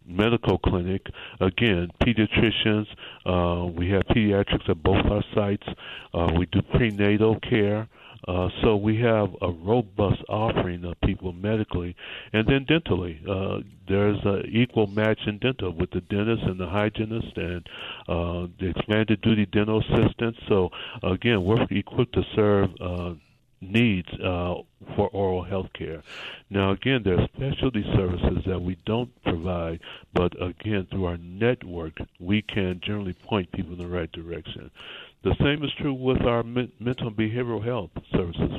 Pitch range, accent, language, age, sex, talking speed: 90-115 Hz, American, English, 60-79, male, 150 wpm